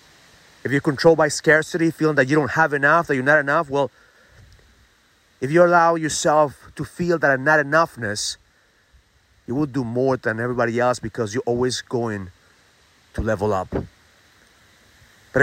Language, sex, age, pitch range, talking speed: English, male, 30-49, 105-150 Hz, 155 wpm